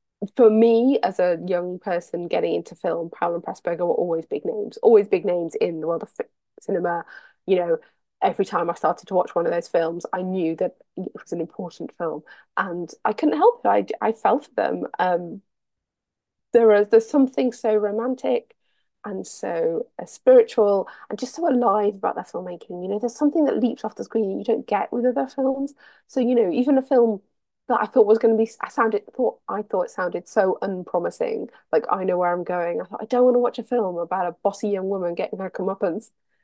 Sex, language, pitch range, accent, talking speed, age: female, English, 185-270 Hz, British, 215 wpm, 30-49